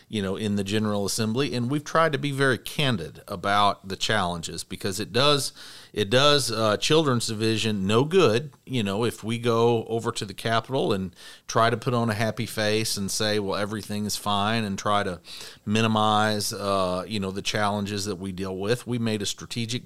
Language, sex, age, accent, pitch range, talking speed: English, male, 40-59, American, 95-115 Hz, 200 wpm